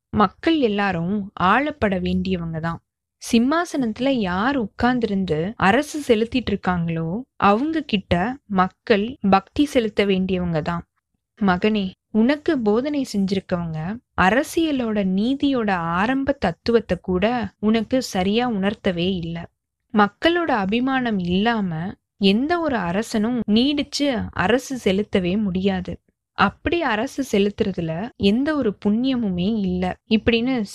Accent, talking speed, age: native, 90 wpm, 20-39